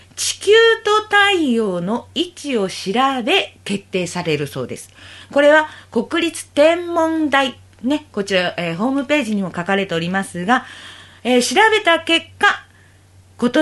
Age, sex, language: 40-59, female, Japanese